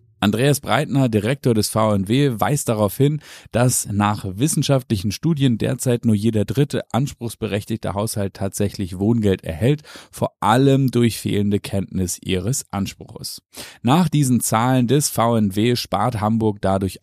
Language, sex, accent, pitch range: German, male, German, 95-125 Hz